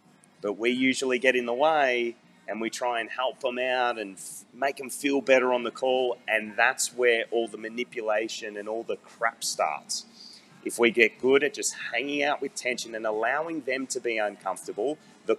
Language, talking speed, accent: English, 195 wpm, Australian